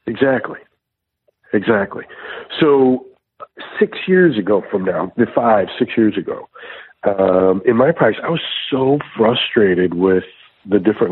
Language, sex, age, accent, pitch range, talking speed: English, male, 50-69, American, 95-115 Hz, 130 wpm